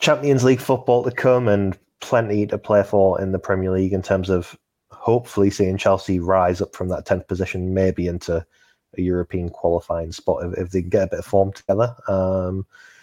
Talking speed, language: 200 wpm, English